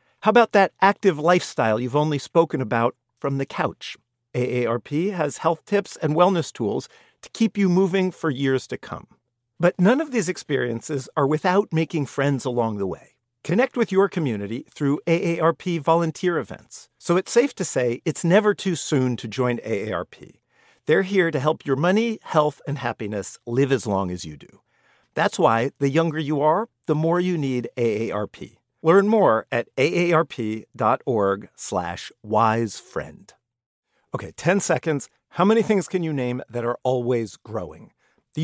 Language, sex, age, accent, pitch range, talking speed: English, male, 50-69, American, 130-190 Hz, 165 wpm